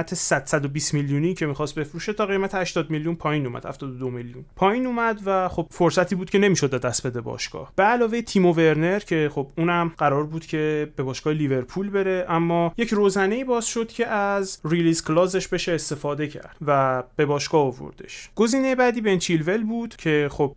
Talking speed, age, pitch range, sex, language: 175 wpm, 30-49, 140-175 Hz, male, Persian